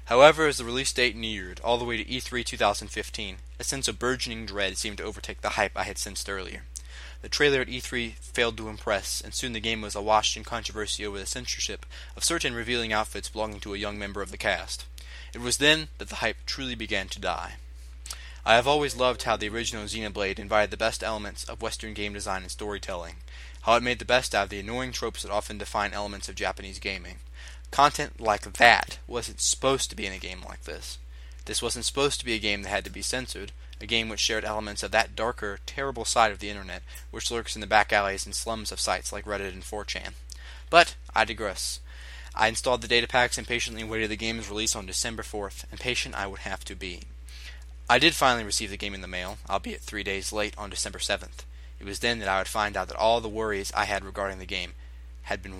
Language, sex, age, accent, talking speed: English, male, 20-39, American, 230 wpm